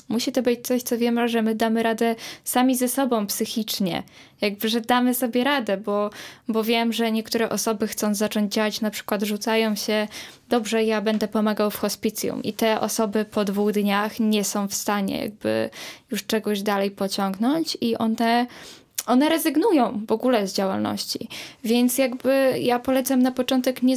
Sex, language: female, Polish